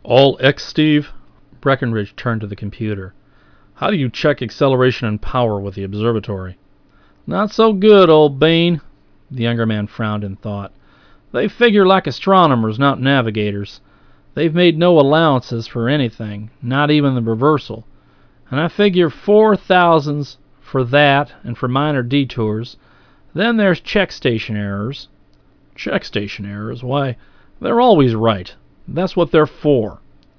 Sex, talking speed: male, 140 wpm